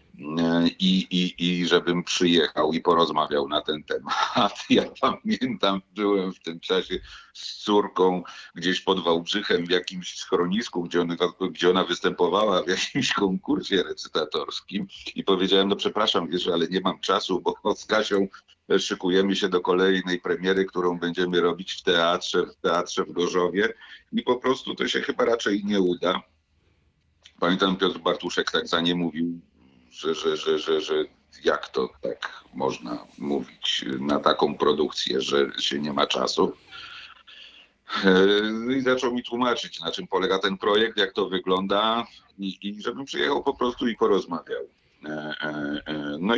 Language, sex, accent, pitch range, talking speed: Polish, male, native, 80-110 Hz, 145 wpm